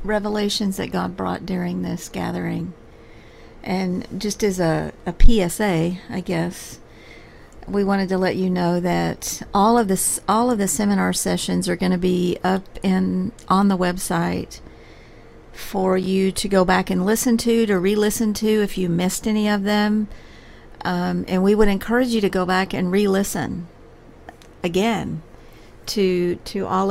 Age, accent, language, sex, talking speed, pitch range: 50-69, American, English, female, 160 wpm, 170-200 Hz